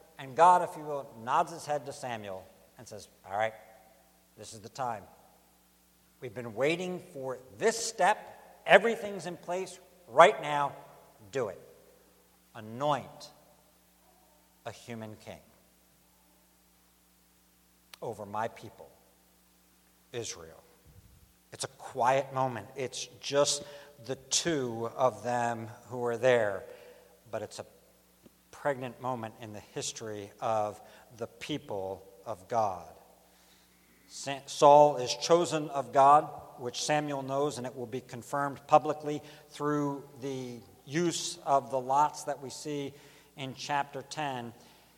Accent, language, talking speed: American, English, 120 wpm